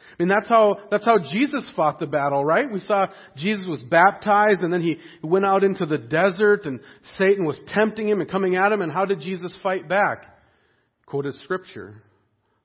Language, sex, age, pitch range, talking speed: English, male, 40-59, 140-190 Hz, 195 wpm